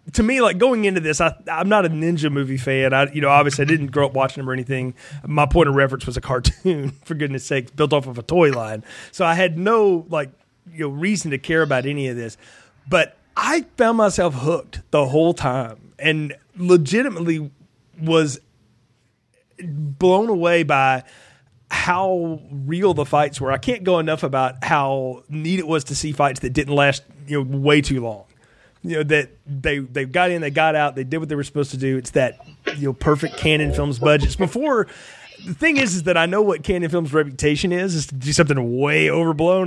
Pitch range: 135-175 Hz